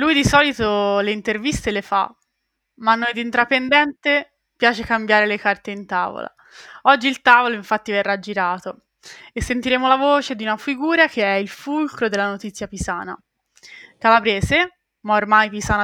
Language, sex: Italian, female